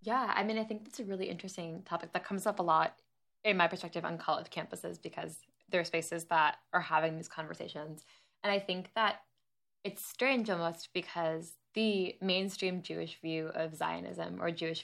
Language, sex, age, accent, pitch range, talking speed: English, female, 10-29, American, 160-185 Hz, 185 wpm